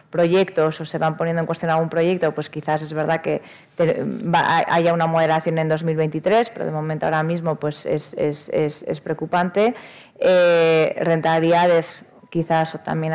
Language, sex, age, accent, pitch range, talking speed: Spanish, female, 20-39, Spanish, 155-180 Hz, 155 wpm